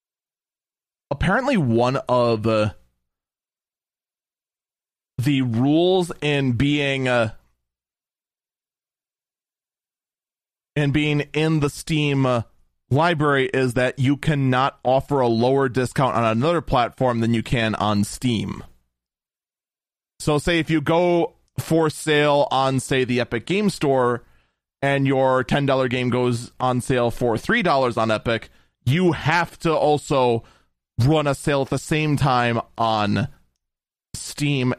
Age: 30-49